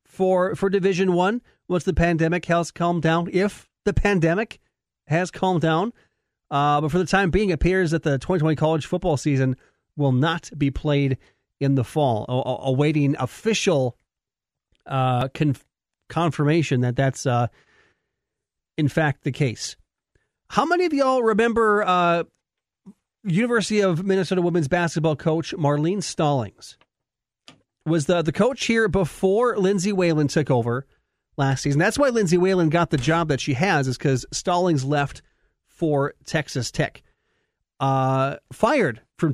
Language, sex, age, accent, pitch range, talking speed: English, male, 40-59, American, 140-180 Hz, 145 wpm